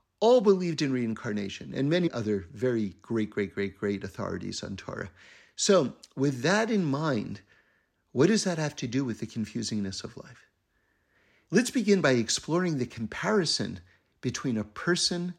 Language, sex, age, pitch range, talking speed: English, male, 50-69, 110-155 Hz, 155 wpm